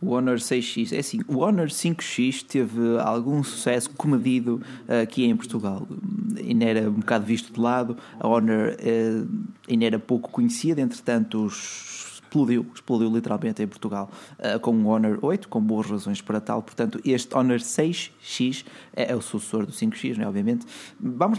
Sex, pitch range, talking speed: male, 115-160 Hz, 170 wpm